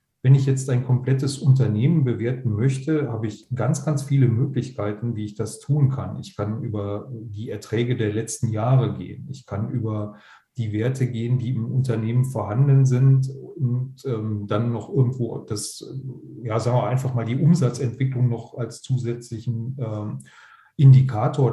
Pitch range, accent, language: 110-130 Hz, German, German